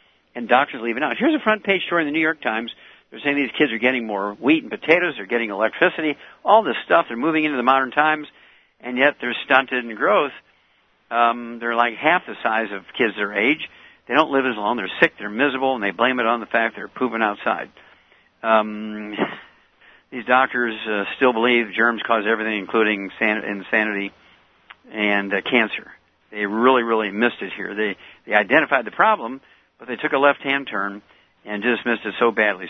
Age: 60-79